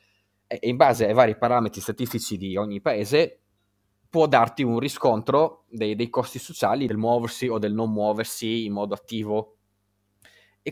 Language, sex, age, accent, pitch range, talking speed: Italian, male, 20-39, native, 105-140 Hz, 150 wpm